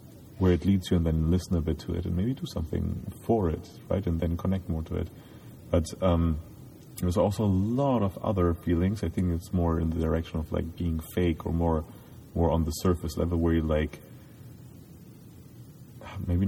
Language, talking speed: English, 200 wpm